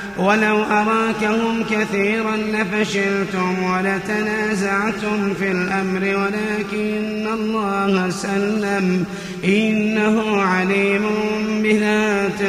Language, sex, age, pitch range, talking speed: Arabic, male, 30-49, 195-215 Hz, 60 wpm